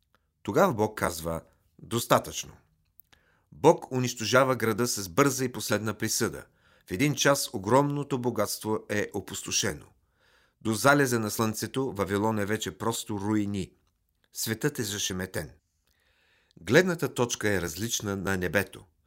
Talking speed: 115 wpm